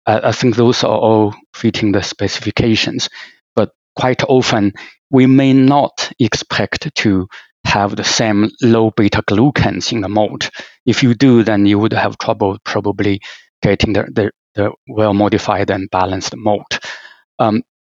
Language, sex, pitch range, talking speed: English, male, 100-115 Hz, 145 wpm